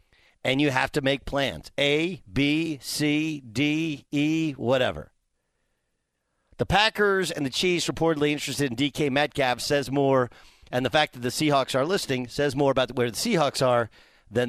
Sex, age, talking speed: male, 50-69, 165 wpm